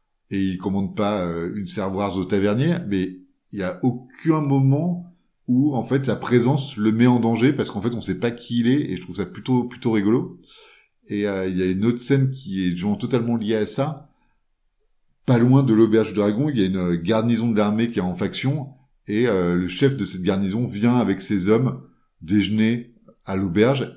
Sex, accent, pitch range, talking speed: male, French, 105-135 Hz, 215 wpm